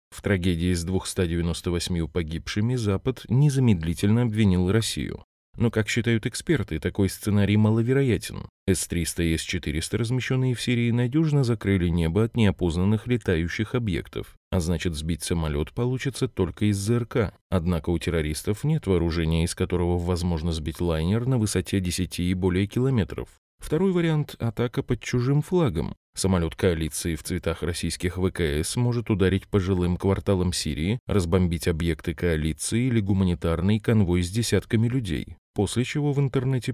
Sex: male